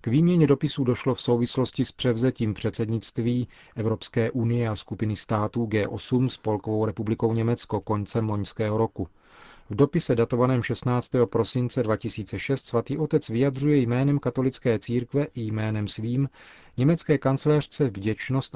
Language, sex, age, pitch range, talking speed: Czech, male, 40-59, 110-130 Hz, 125 wpm